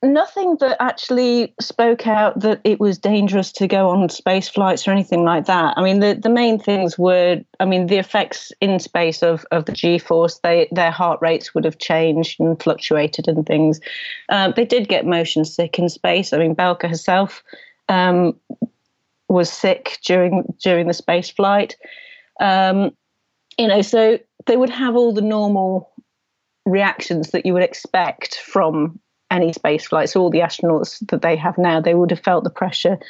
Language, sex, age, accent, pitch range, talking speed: English, female, 40-59, British, 170-210 Hz, 180 wpm